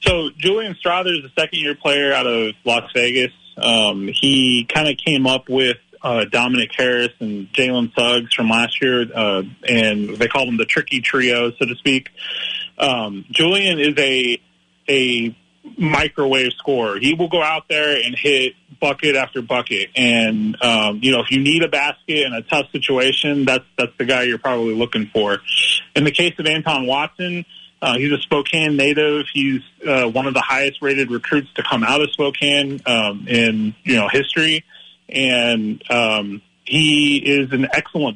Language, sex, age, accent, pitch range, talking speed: English, male, 30-49, American, 120-145 Hz, 175 wpm